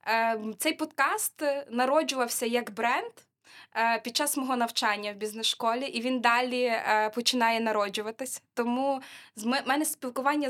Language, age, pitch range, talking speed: Ukrainian, 20-39, 225-270 Hz, 115 wpm